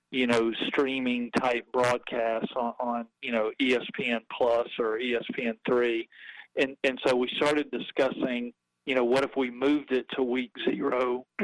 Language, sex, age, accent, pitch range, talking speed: English, male, 40-59, American, 120-130 Hz, 155 wpm